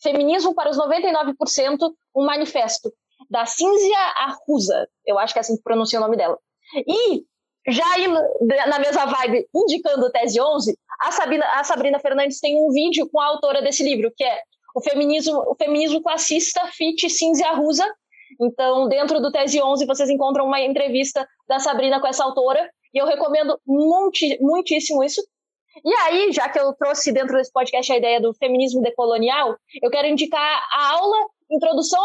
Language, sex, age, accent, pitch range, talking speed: Portuguese, female, 20-39, Brazilian, 275-325 Hz, 165 wpm